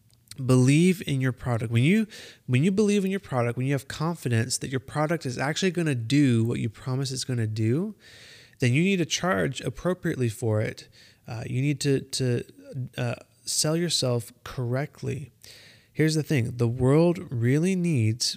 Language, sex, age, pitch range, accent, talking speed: English, male, 30-49, 115-140 Hz, American, 180 wpm